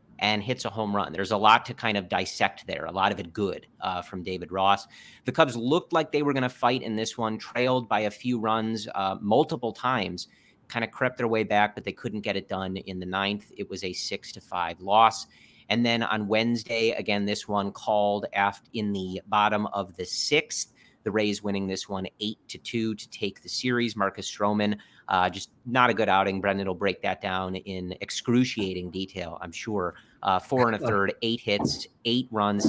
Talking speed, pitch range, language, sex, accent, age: 215 wpm, 95-115 Hz, English, male, American, 30-49